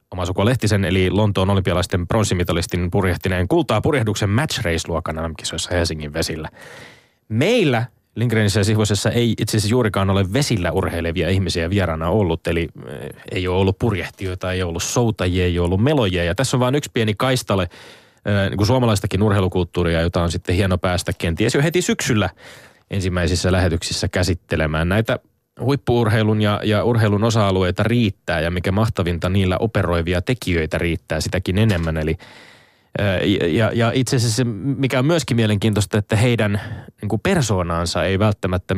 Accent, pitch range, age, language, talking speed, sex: native, 90-110 Hz, 20-39, Finnish, 145 wpm, male